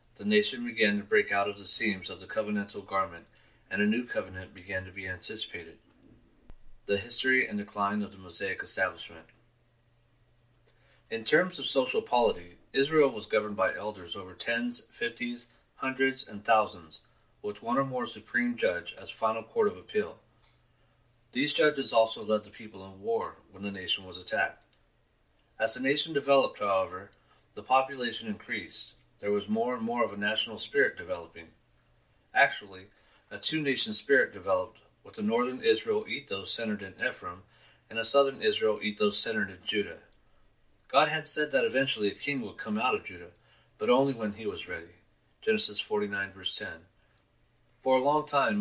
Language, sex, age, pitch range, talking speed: English, male, 30-49, 100-150 Hz, 165 wpm